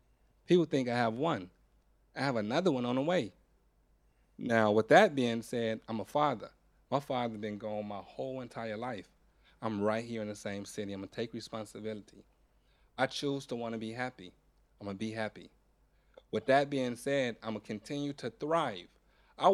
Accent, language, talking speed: American, Hebrew, 185 wpm